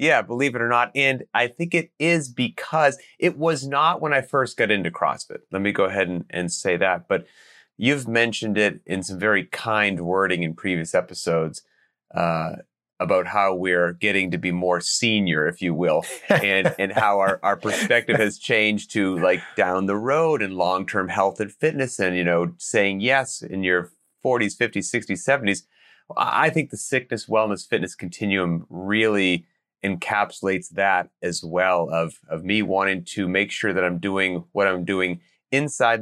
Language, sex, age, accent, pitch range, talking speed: English, male, 30-49, American, 90-110 Hz, 180 wpm